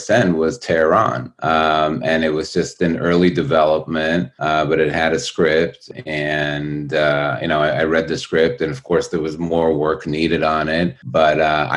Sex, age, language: male, 30-49, English